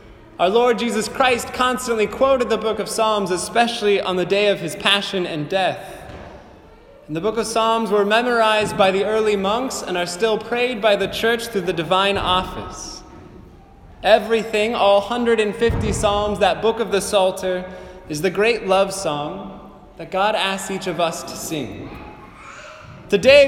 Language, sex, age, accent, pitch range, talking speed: English, male, 20-39, American, 200-240 Hz, 165 wpm